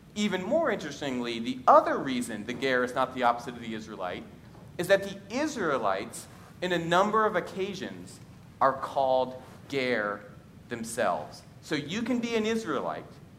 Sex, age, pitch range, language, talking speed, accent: male, 40-59, 125-185 Hz, English, 150 wpm, American